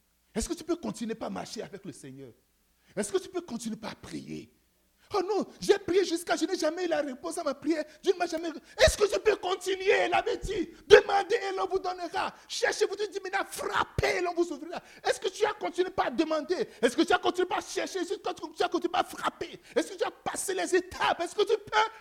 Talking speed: 240 wpm